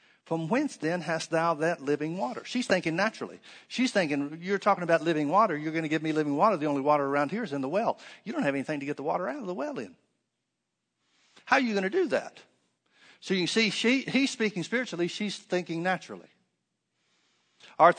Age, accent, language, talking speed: 60-79, American, English, 220 wpm